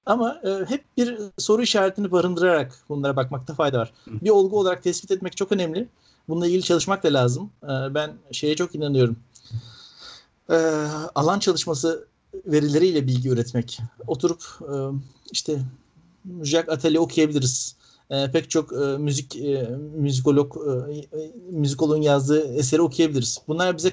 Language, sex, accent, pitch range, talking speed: Turkish, male, native, 135-175 Hz, 135 wpm